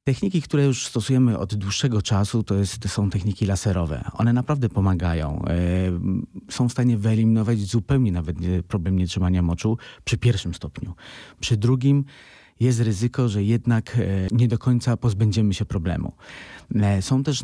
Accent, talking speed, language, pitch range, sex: native, 140 wpm, Polish, 95-115 Hz, male